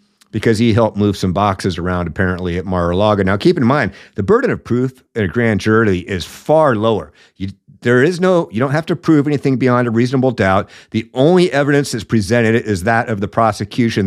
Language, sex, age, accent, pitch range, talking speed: English, male, 50-69, American, 110-150 Hz, 210 wpm